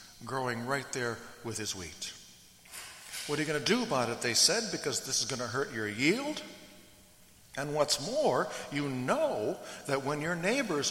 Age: 60-79